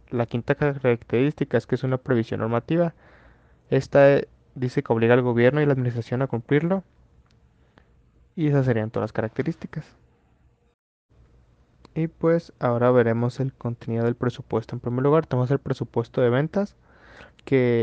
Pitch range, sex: 120-145 Hz, male